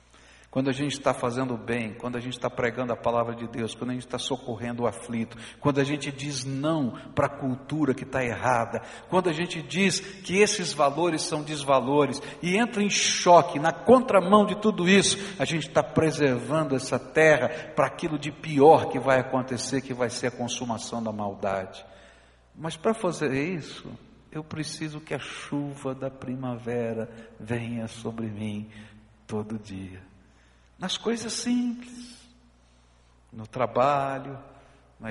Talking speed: 160 wpm